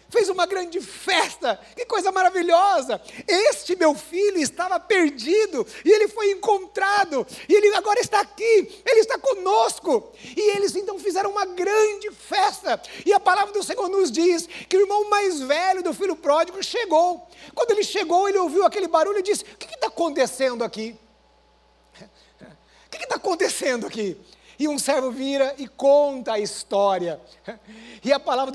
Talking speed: 160 wpm